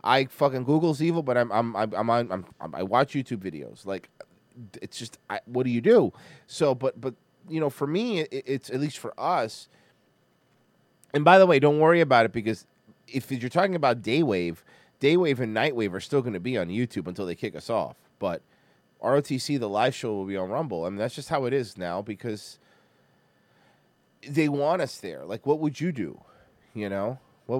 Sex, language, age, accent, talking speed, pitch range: male, English, 30-49, American, 200 wpm, 110-140 Hz